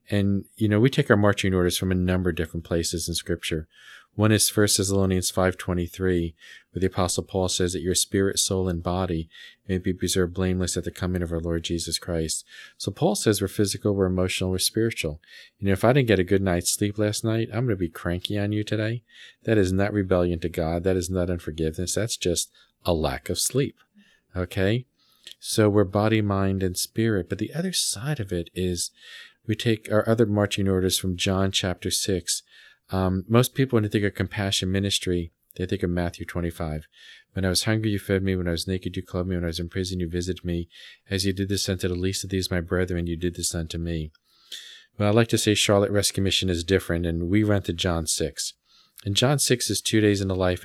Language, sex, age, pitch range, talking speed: English, male, 40-59, 90-105 Hz, 225 wpm